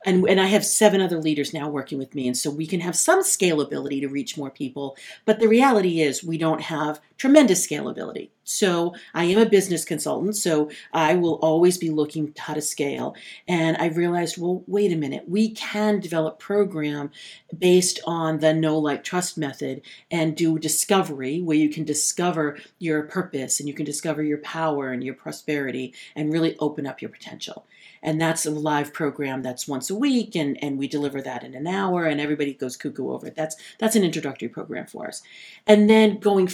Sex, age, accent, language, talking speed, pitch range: female, 40-59, American, English, 200 wpm, 150-195 Hz